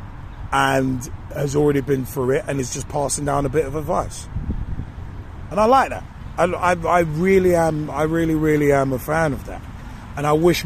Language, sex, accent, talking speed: English, male, British, 195 wpm